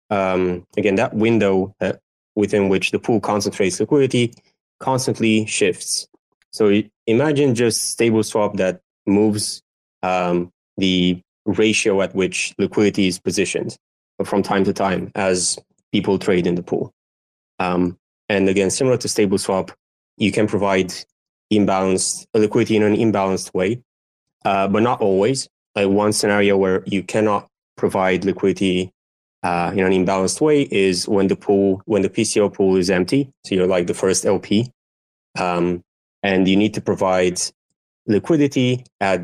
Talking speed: 145 wpm